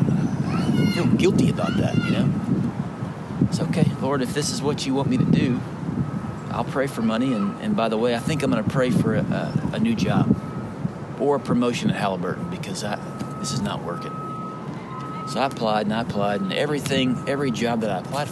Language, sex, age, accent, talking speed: English, male, 40-59, American, 205 wpm